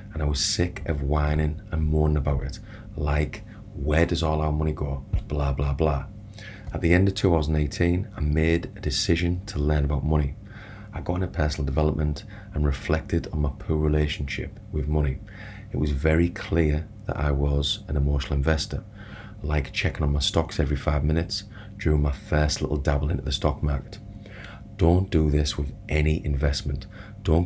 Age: 30-49